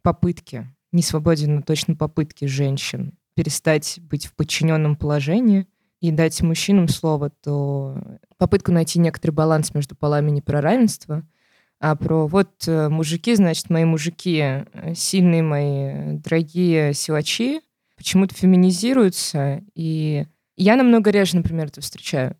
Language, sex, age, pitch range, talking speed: Russian, female, 20-39, 145-175 Hz, 125 wpm